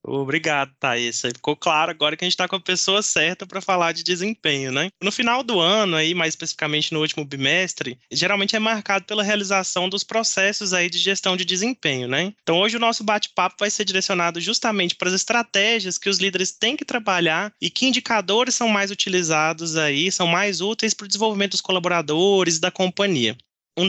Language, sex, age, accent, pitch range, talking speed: Portuguese, male, 20-39, Brazilian, 175-220 Hz, 190 wpm